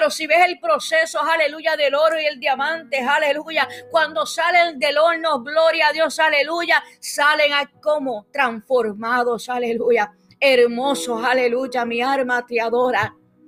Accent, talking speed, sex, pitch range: American, 135 wpm, female, 265-310 Hz